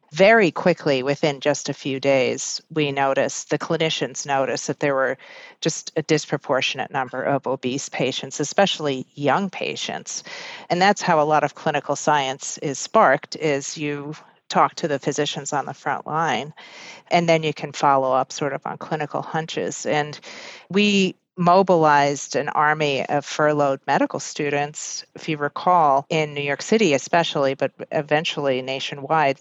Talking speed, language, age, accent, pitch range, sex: 155 wpm, English, 40-59, American, 140-165 Hz, female